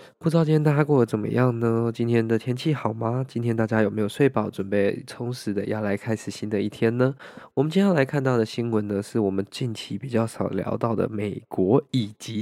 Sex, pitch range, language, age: male, 110-125 Hz, Chinese, 20-39